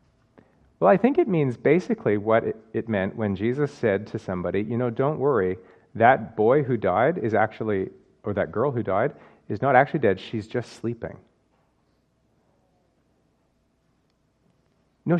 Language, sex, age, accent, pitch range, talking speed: English, male, 40-59, American, 110-150 Hz, 145 wpm